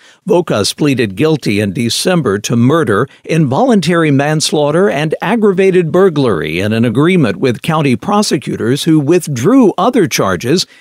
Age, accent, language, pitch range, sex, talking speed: 60-79, American, English, 140-195 Hz, male, 120 wpm